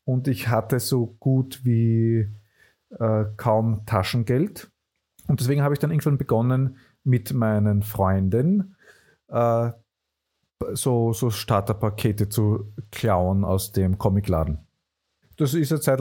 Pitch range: 105-130 Hz